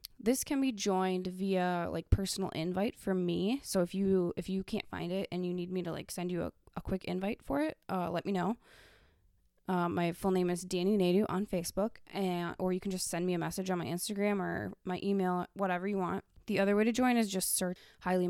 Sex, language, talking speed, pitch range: female, English, 235 wpm, 175-205 Hz